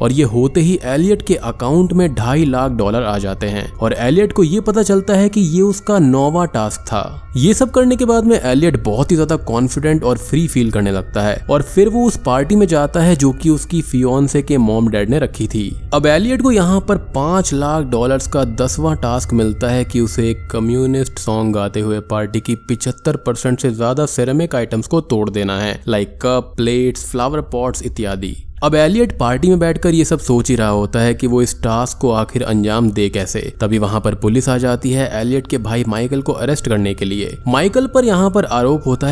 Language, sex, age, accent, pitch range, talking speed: Hindi, male, 20-39, native, 115-160 Hz, 205 wpm